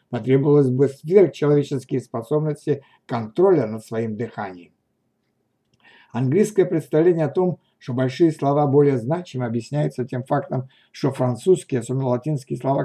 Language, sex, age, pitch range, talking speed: Russian, male, 60-79, 130-165 Hz, 115 wpm